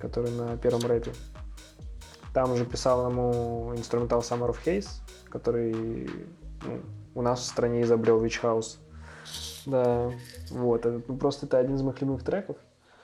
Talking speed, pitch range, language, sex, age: 145 wpm, 115-125 Hz, English, male, 20-39